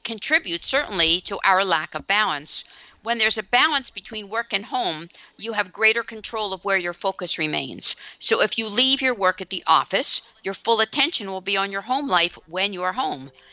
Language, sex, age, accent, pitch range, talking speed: English, female, 50-69, American, 185-235 Hz, 205 wpm